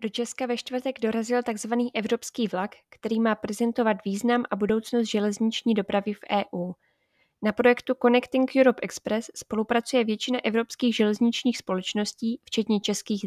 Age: 20-39